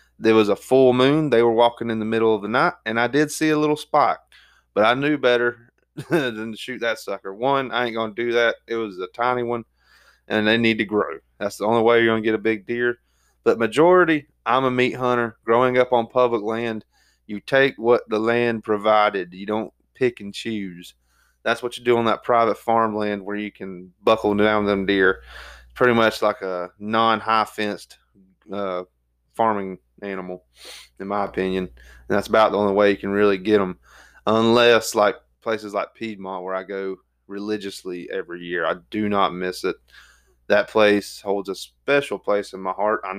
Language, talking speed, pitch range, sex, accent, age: English, 195 wpm, 100-120 Hz, male, American, 20-39